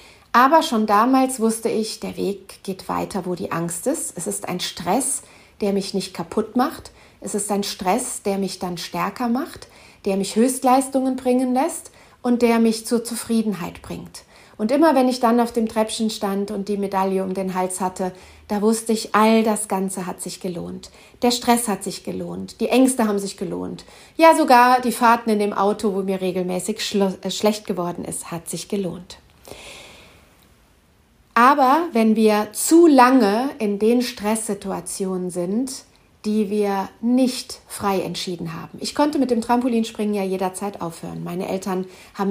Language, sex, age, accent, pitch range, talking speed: German, female, 40-59, German, 190-235 Hz, 170 wpm